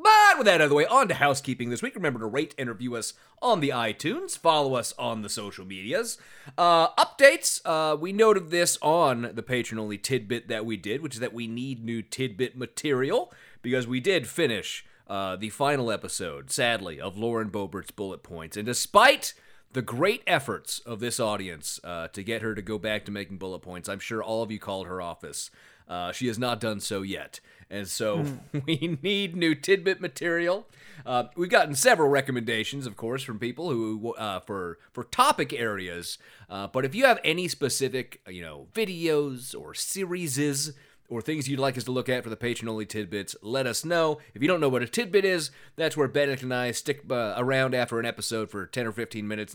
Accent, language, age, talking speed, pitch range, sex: American, English, 30-49, 205 wpm, 110-150 Hz, male